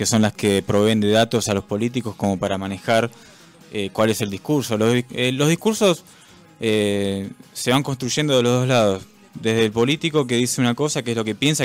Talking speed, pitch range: 215 wpm, 100-125 Hz